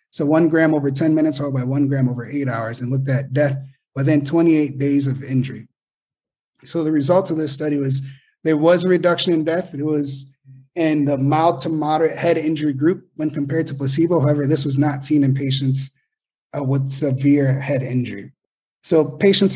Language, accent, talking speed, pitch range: English, American, 195 wpm, 130-155 Hz